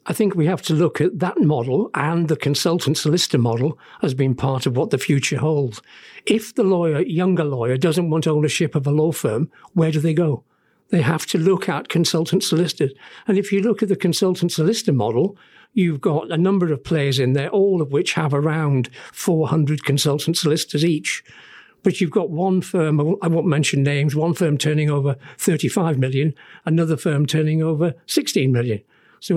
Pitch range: 150-190 Hz